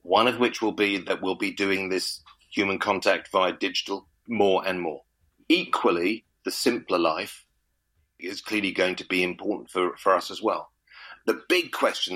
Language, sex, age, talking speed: English, male, 40-59, 175 wpm